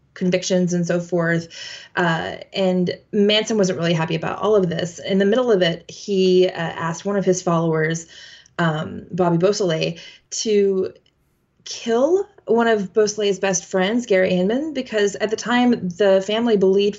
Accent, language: American, English